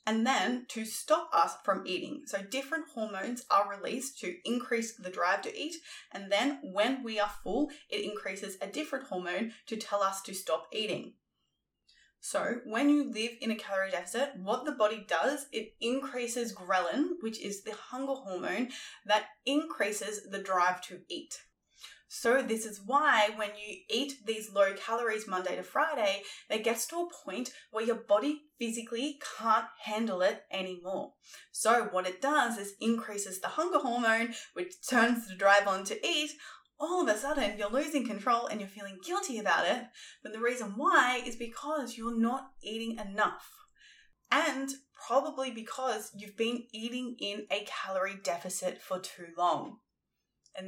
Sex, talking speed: female, 165 wpm